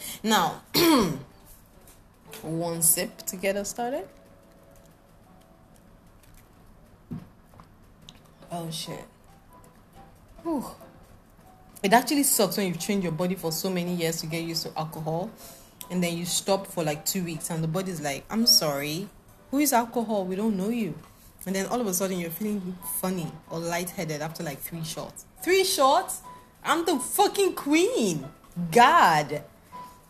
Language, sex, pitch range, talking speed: English, female, 160-210 Hz, 140 wpm